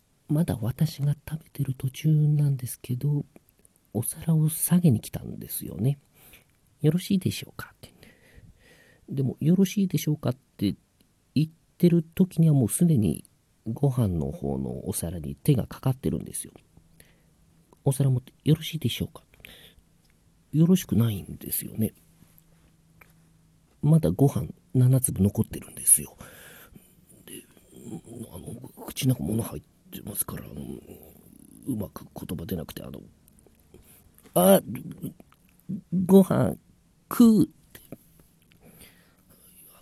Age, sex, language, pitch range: 50-69, male, Japanese, 105-160 Hz